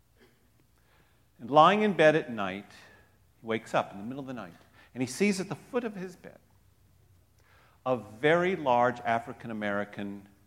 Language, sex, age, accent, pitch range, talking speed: English, male, 50-69, American, 105-150 Hz, 160 wpm